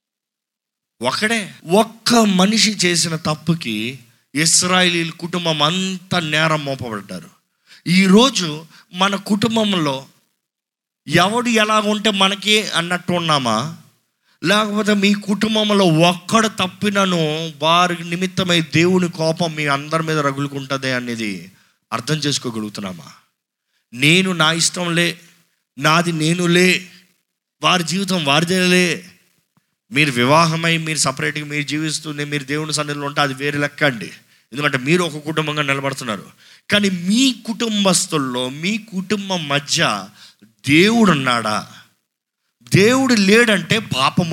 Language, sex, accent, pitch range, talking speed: Telugu, male, native, 150-195 Hz, 100 wpm